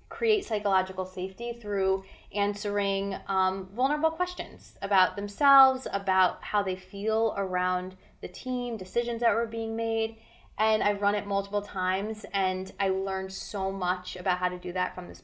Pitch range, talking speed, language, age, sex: 185-235 Hz, 160 wpm, English, 20-39, female